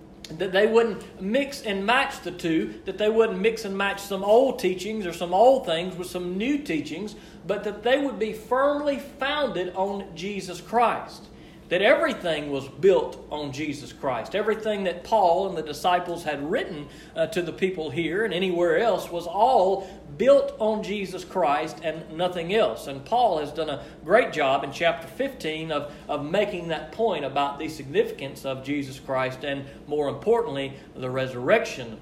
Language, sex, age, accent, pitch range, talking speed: English, male, 40-59, American, 150-215 Hz, 175 wpm